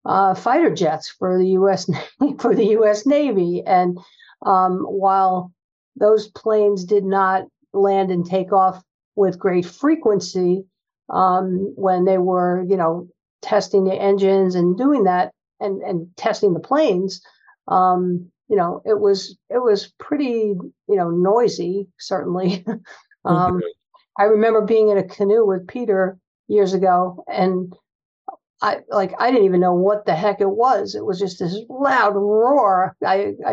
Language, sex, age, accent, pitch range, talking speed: English, female, 50-69, American, 185-210 Hz, 150 wpm